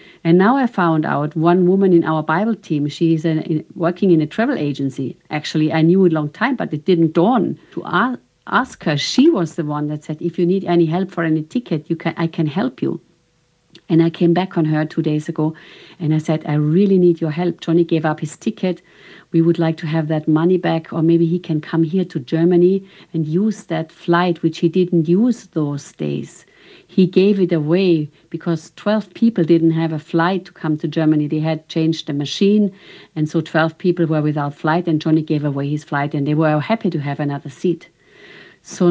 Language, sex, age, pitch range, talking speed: English, female, 50-69, 155-185 Hz, 220 wpm